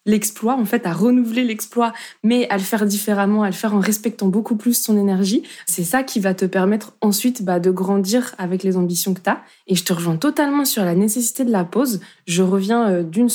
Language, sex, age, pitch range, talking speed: French, female, 20-39, 190-240 Hz, 225 wpm